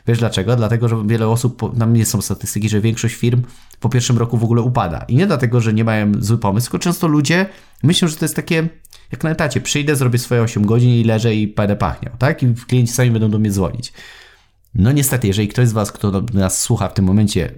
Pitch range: 100-120 Hz